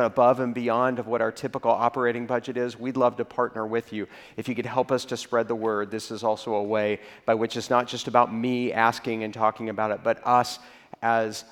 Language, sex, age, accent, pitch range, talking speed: English, male, 40-59, American, 115-130 Hz, 235 wpm